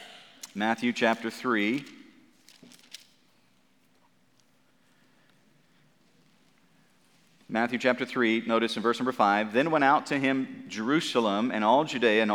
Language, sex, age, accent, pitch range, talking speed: English, male, 40-59, American, 115-150 Hz, 100 wpm